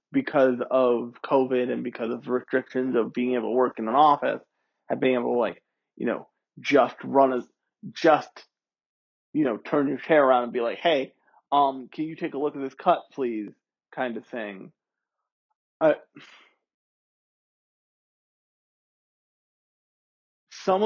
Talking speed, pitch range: 150 wpm, 130-160 Hz